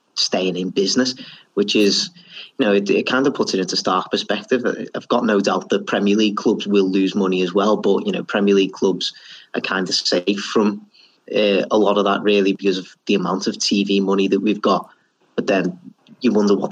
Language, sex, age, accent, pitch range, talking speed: English, male, 30-49, British, 95-105 Hz, 220 wpm